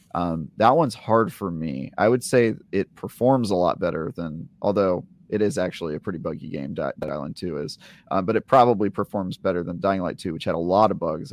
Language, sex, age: English, male, 30-49